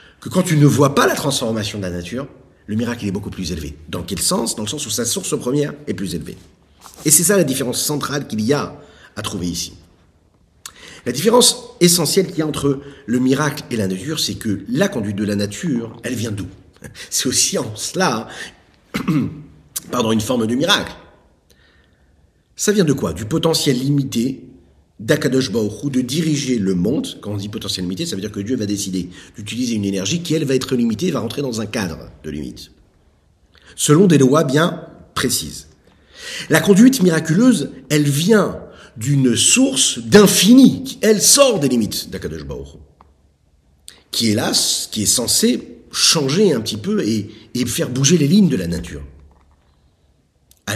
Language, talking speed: French, 185 wpm